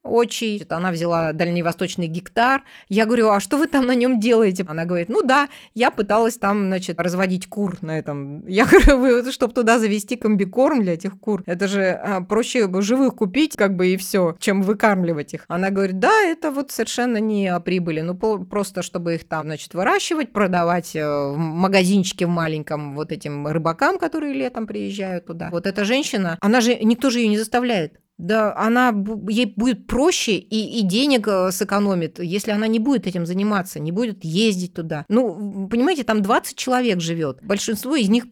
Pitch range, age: 175-230 Hz, 30-49